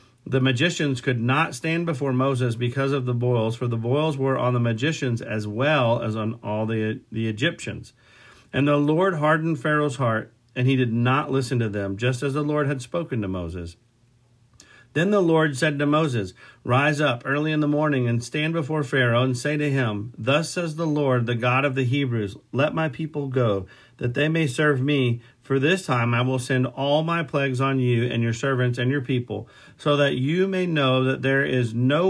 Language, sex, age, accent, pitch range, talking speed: English, male, 50-69, American, 120-150 Hz, 210 wpm